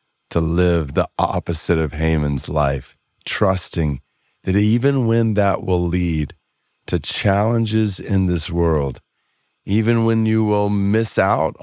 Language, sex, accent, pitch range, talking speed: English, male, American, 80-100 Hz, 130 wpm